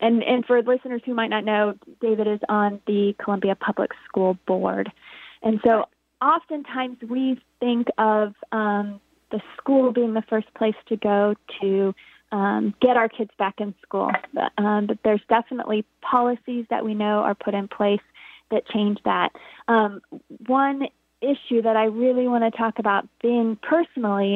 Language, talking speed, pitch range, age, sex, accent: English, 165 wpm, 205-245 Hz, 20-39, female, American